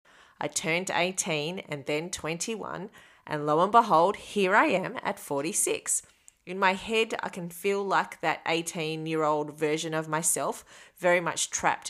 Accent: Australian